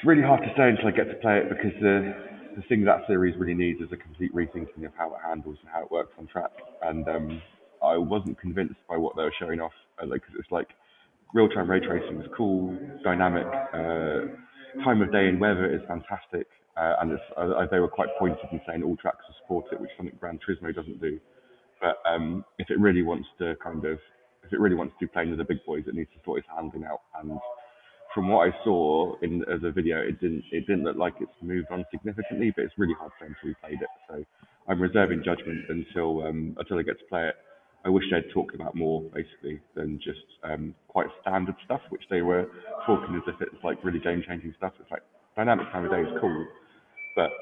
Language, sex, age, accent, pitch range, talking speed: English, male, 20-39, British, 80-95 Hz, 235 wpm